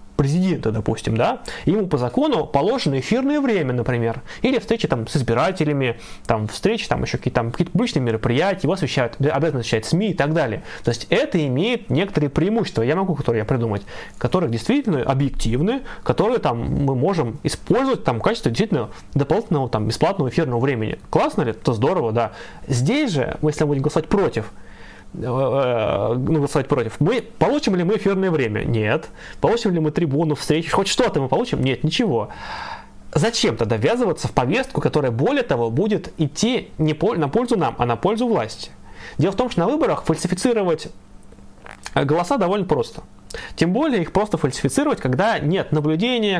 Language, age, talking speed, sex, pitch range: Russian, 20-39, 165 wpm, male, 130-185 Hz